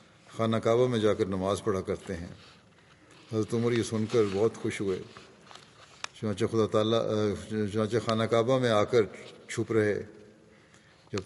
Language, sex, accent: English, male, Indian